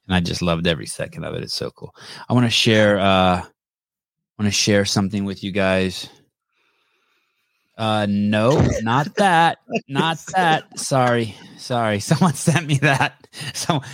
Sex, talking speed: male, 155 wpm